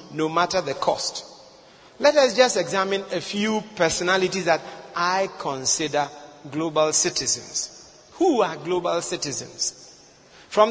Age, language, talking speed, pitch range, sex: 40-59, English, 120 wpm, 155-225 Hz, male